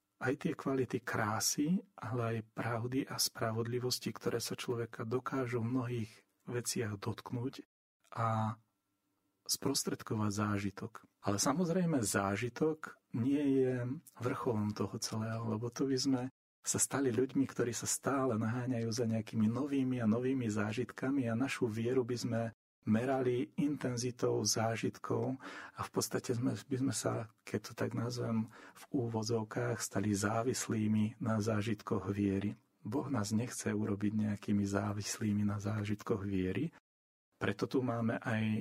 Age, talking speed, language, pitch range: 40-59, 130 wpm, Slovak, 100-125 Hz